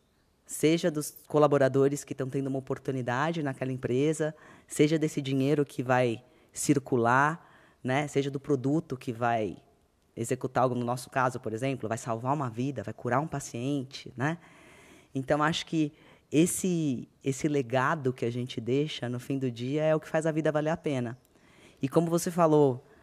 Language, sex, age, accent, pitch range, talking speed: Portuguese, female, 20-39, Brazilian, 125-145 Hz, 170 wpm